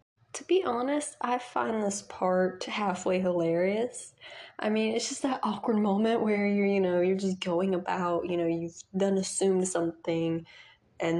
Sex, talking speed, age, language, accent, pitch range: female, 165 wpm, 20-39, English, American, 180-225 Hz